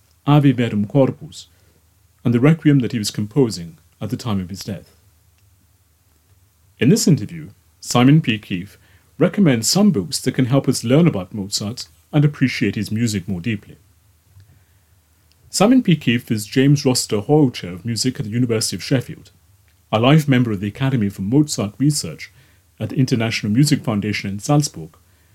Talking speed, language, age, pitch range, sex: 165 wpm, English, 30-49, 95-135 Hz, male